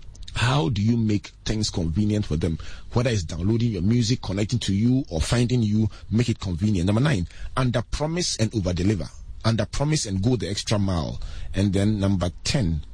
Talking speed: 185 wpm